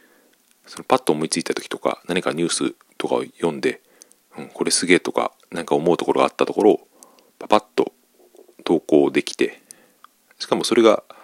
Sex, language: male, Japanese